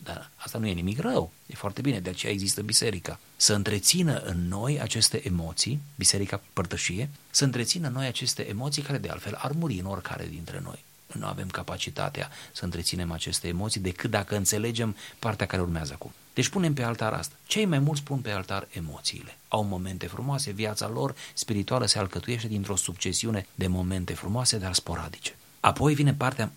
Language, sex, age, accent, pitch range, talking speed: Romanian, male, 30-49, native, 95-130 Hz, 180 wpm